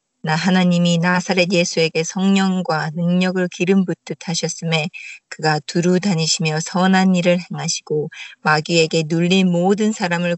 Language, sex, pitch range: Korean, female, 165-185 Hz